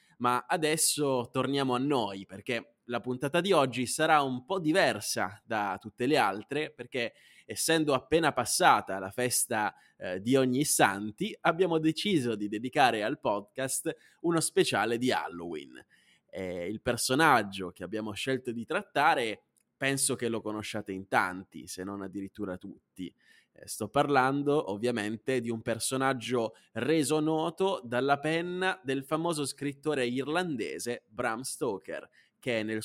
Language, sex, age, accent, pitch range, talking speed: Italian, male, 20-39, native, 115-155 Hz, 135 wpm